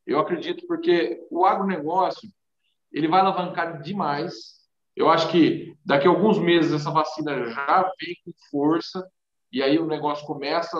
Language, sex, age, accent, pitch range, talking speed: Portuguese, male, 40-59, Brazilian, 135-190 Hz, 150 wpm